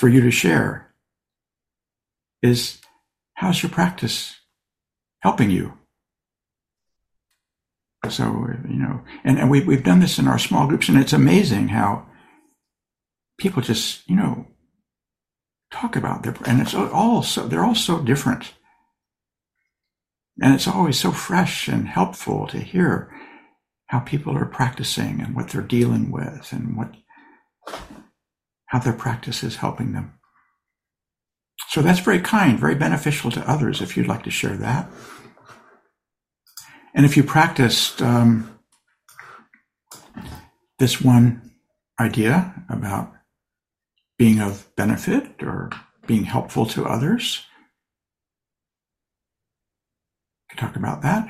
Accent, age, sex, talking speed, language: American, 60-79, male, 120 wpm, English